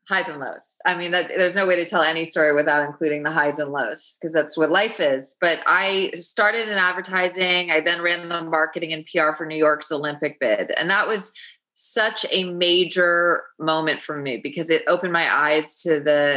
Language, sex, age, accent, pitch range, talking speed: English, female, 20-39, American, 150-180 Hz, 205 wpm